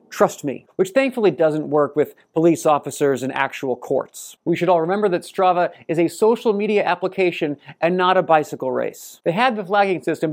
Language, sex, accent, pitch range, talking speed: English, male, American, 145-195 Hz, 190 wpm